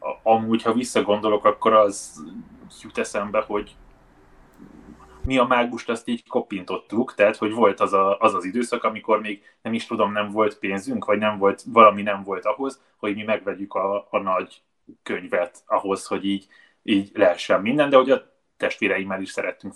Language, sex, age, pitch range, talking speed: Hungarian, male, 20-39, 100-115 Hz, 170 wpm